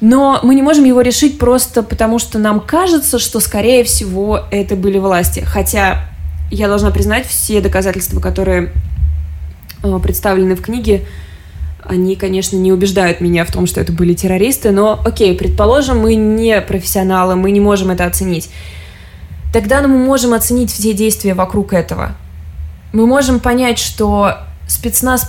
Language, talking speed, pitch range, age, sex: Russian, 145 wpm, 185-235 Hz, 20-39, female